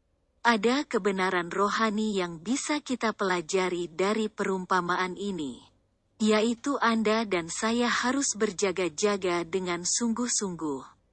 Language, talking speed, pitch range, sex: Indonesian, 95 wpm, 180-225 Hz, female